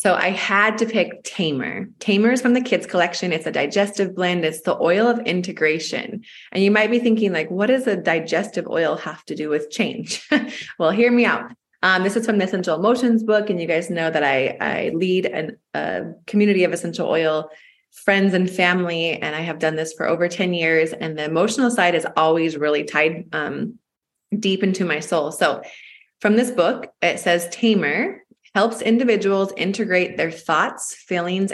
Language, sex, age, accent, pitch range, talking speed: English, female, 20-39, American, 165-210 Hz, 190 wpm